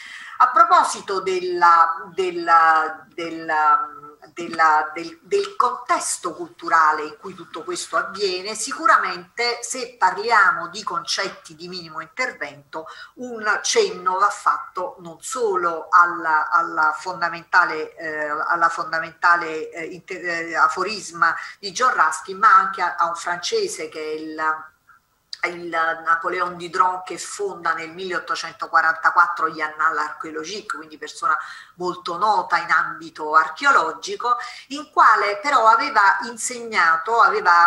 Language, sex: Italian, female